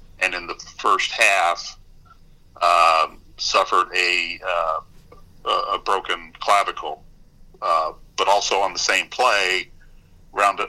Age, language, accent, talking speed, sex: 50-69, English, American, 110 wpm, male